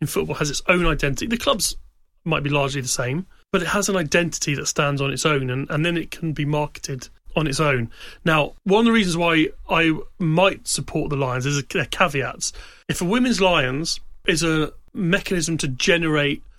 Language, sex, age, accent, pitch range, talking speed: English, male, 30-49, British, 140-170 Hz, 205 wpm